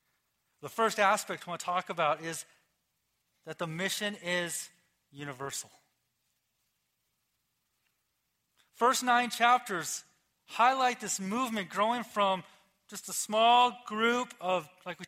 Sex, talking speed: male, 115 wpm